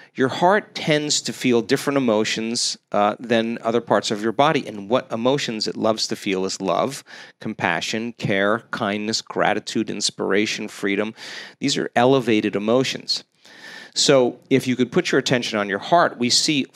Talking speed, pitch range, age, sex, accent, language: 160 wpm, 110-140 Hz, 40-59, male, American, English